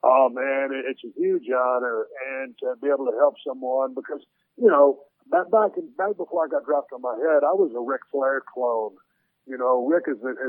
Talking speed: 210 wpm